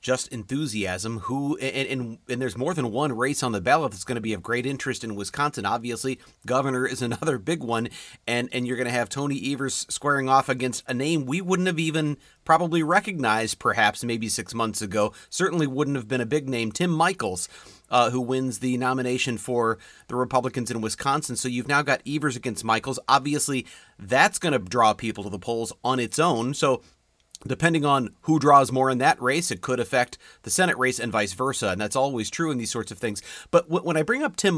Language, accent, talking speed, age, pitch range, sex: English, American, 215 wpm, 30-49, 115-150 Hz, male